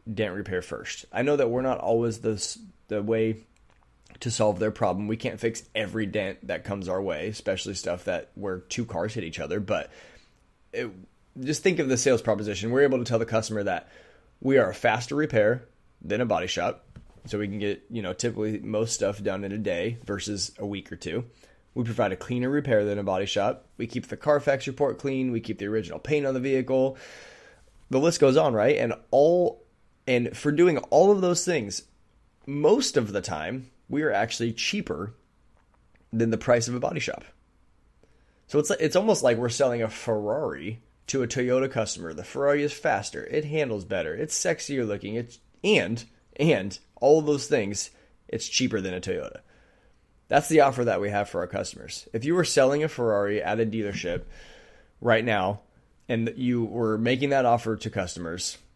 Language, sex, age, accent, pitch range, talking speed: English, male, 20-39, American, 105-135 Hz, 195 wpm